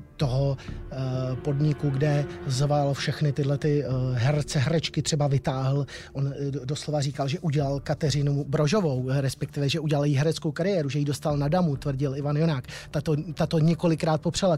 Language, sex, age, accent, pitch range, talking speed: Czech, male, 30-49, native, 145-165 Hz, 145 wpm